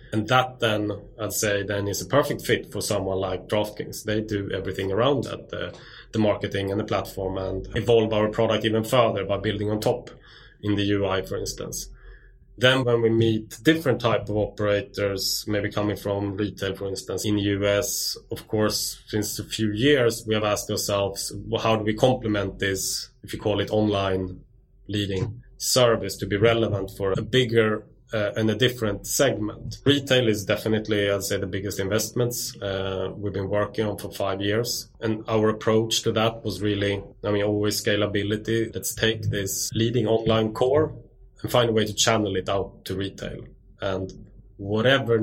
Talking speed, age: 180 wpm, 20-39